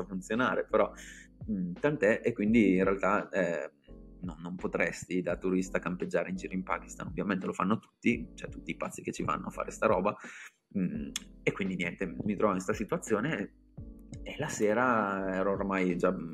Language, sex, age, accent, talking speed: Italian, male, 20-39, native, 185 wpm